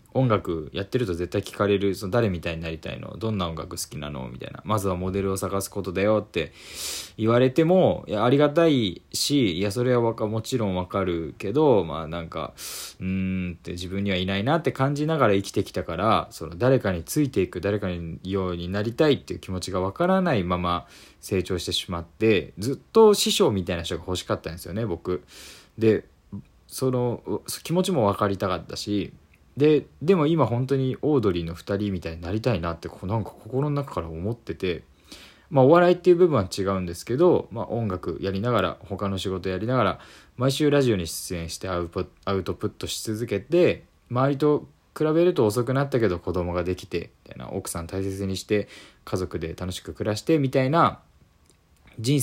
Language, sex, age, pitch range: Japanese, male, 20-39, 90-125 Hz